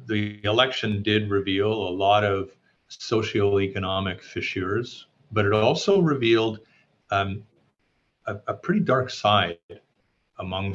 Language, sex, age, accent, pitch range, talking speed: English, male, 50-69, American, 95-110 Hz, 110 wpm